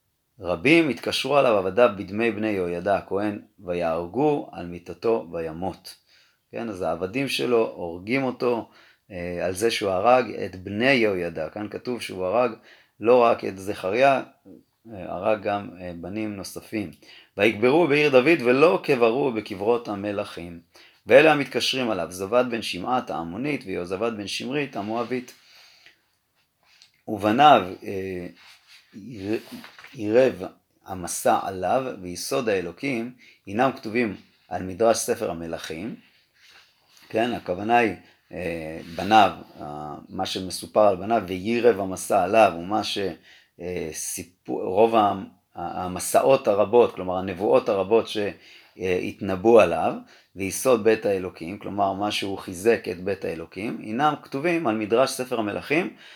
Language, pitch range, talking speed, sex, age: Hebrew, 90-120 Hz, 115 wpm, male, 30-49